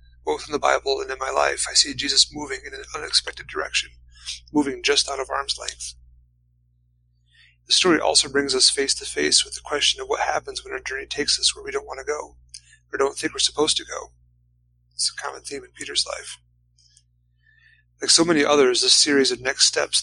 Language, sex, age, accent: English, male, 30-49, American